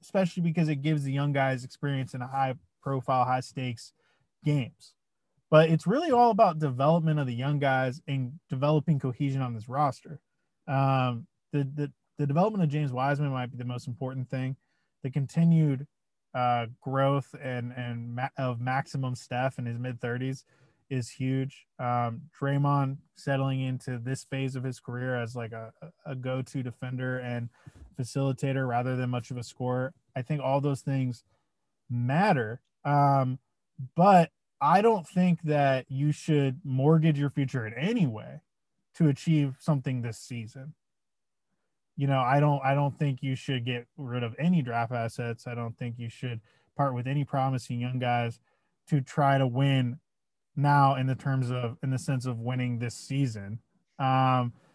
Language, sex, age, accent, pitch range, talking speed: English, male, 20-39, American, 125-145 Hz, 160 wpm